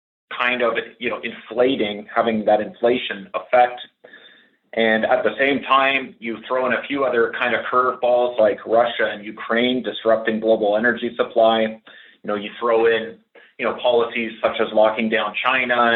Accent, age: American, 30-49